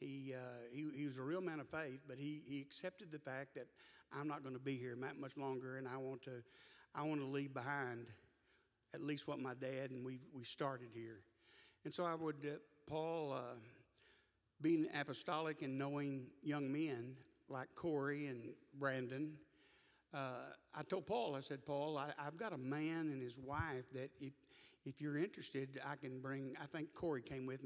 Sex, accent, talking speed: male, American, 195 wpm